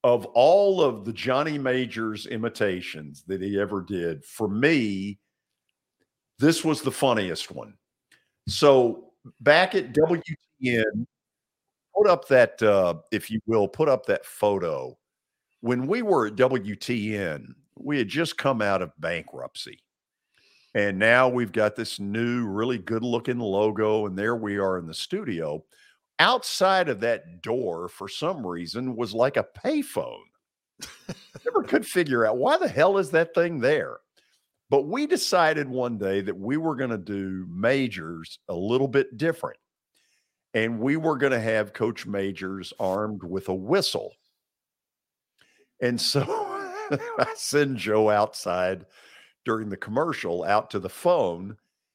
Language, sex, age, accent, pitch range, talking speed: English, male, 50-69, American, 100-140 Hz, 145 wpm